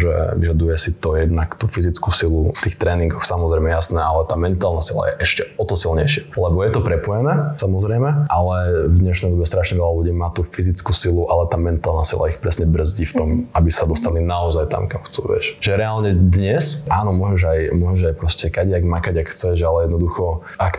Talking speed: 200 wpm